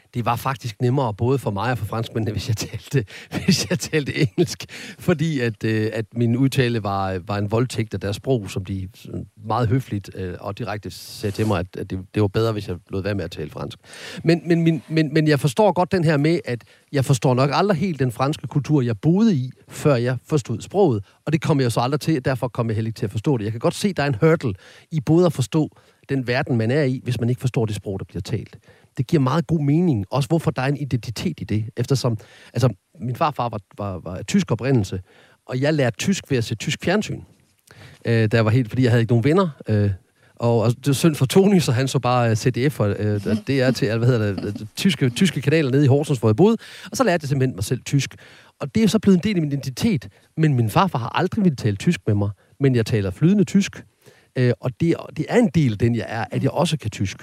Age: 40-59